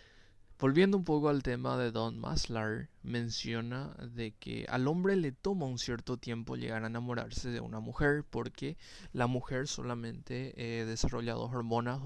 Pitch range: 115-130 Hz